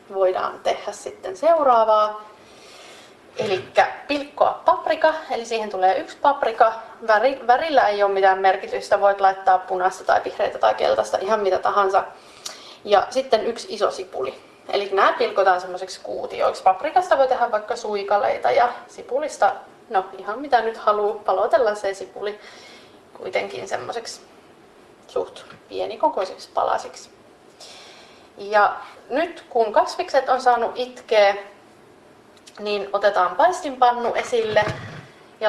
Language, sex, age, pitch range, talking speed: Finnish, female, 30-49, 200-255 Hz, 115 wpm